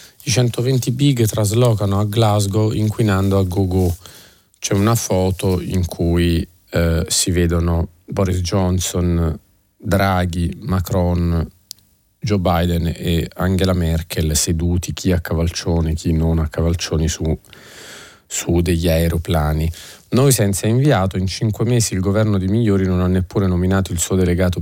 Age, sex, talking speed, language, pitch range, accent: 40-59, male, 135 wpm, Italian, 90-110 Hz, native